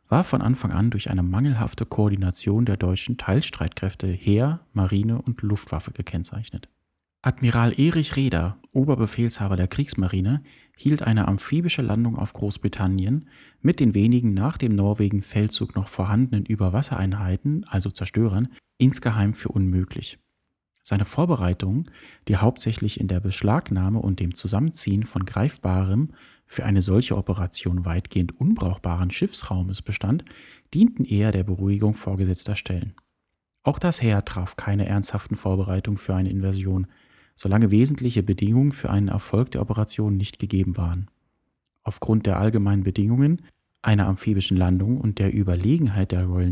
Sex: male